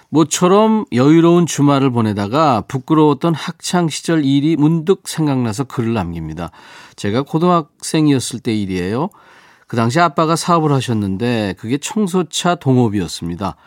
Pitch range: 115-155 Hz